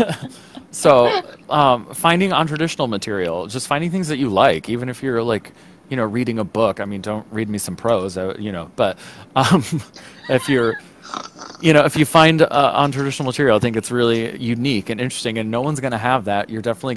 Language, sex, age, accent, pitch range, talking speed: English, male, 30-49, American, 100-120 Hz, 205 wpm